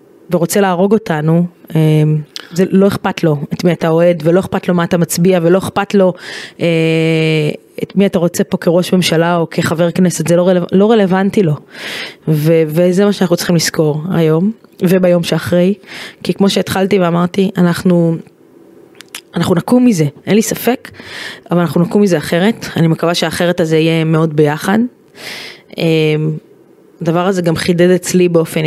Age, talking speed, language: 20-39, 155 wpm, Hebrew